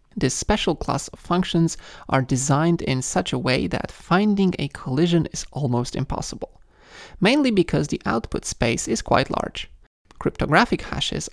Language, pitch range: English, 135-185 Hz